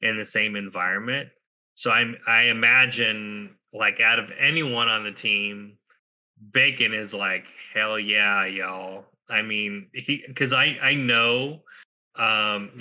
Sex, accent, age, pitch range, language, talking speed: male, American, 20-39, 100-120 Hz, English, 135 wpm